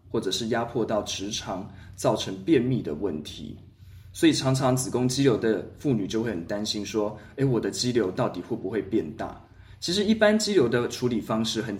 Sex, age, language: male, 20-39, Chinese